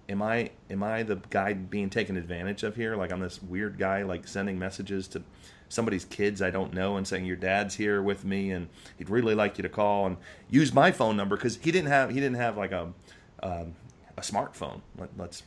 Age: 30-49